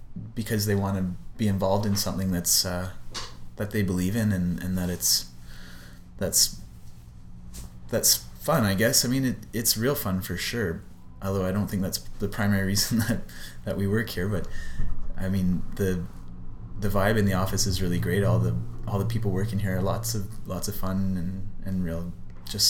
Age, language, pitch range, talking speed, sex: 20-39, English, 90-105 Hz, 195 wpm, male